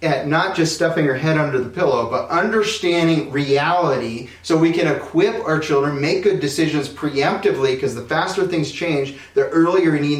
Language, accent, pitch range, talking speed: English, American, 125-165 Hz, 180 wpm